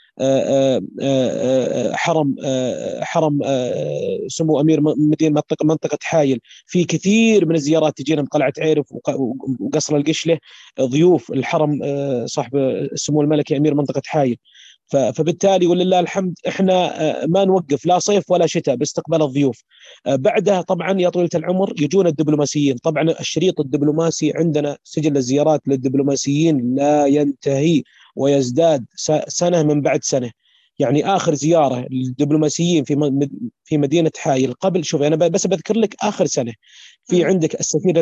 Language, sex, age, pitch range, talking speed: Arabic, male, 30-49, 140-165 Hz, 125 wpm